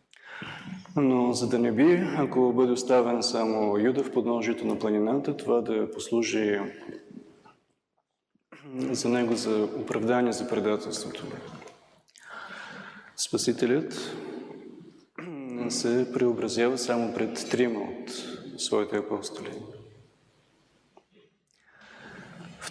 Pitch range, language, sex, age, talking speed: 110-130 Hz, Bulgarian, male, 20-39, 85 wpm